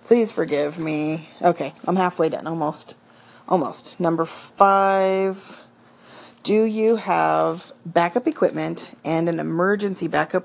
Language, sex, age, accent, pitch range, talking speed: English, female, 40-59, American, 160-185 Hz, 115 wpm